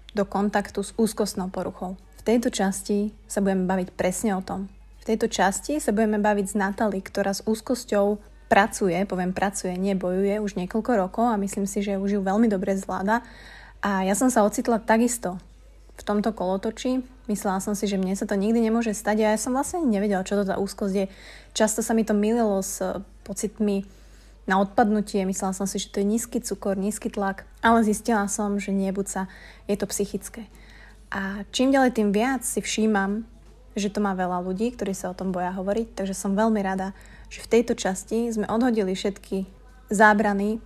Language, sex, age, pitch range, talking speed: Slovak, female, 20-39, 195-220 Hz, 190 wpm